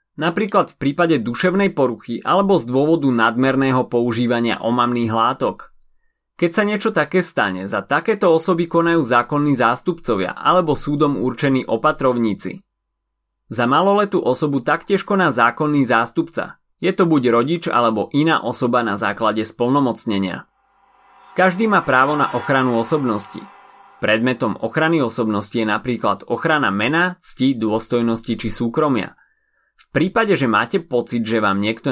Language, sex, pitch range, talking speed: Slovak, male, 115-175 Hz, 130 wpm